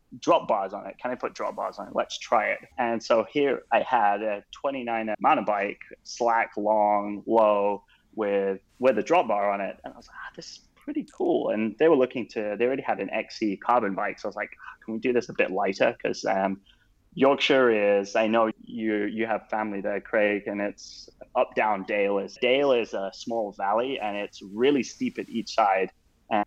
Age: 20-39